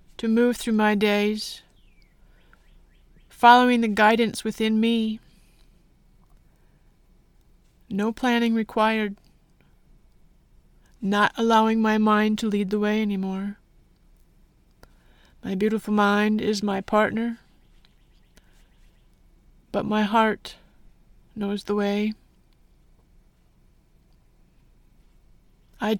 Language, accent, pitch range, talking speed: English, American, 200-220 Hz, 80 wpm